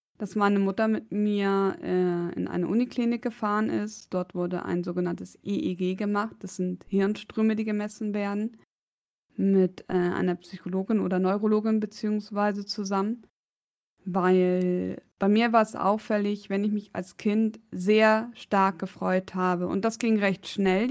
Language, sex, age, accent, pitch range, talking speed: German, female, 20-39, German, 190-215 Hz, 145 wpm